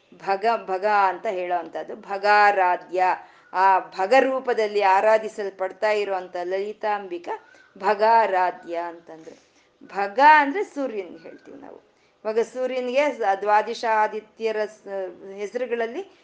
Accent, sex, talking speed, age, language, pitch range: native, female, 90 wpm, 50-69, Kannada, 195-250 Hz